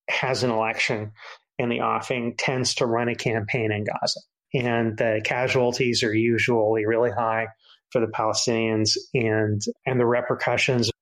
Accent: American